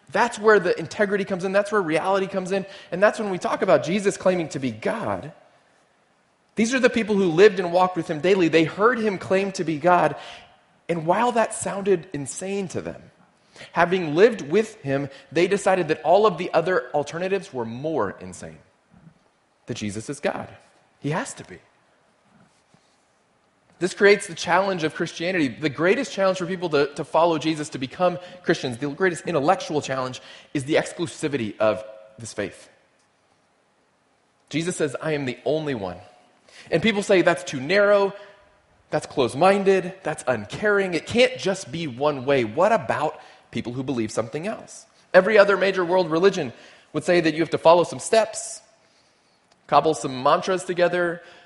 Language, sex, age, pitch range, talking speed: English, male, 30-49, 150-195 Hz, 170 wpm